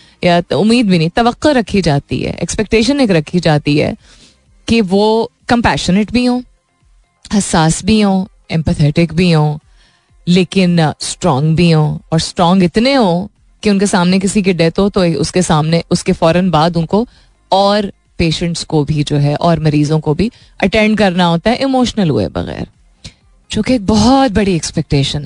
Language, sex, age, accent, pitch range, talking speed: Hindi, female, 20-39, native, 160-215 Hz, 160 wpm